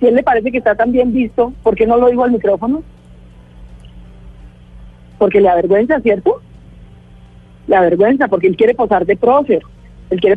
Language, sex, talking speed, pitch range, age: Spanish, female, 175 wpm, 180-255 Hz, 40-59